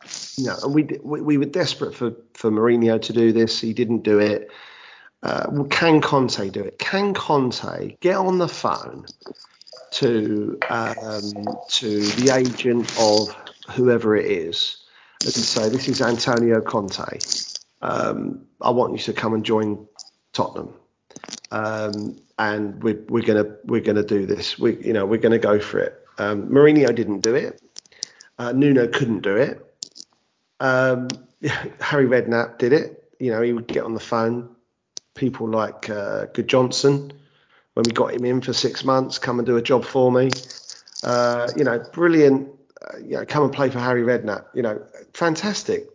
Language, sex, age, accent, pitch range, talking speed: English, male, 40-59, British, 110-135 Hz, 165 wpm